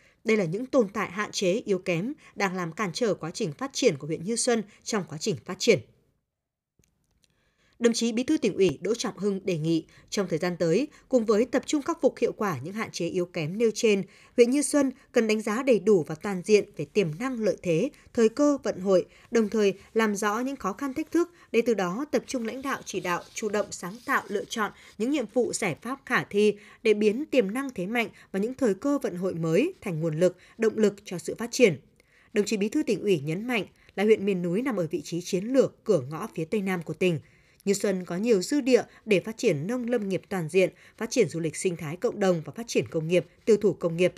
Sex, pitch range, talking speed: female, 185-240 Hz, 250 wpm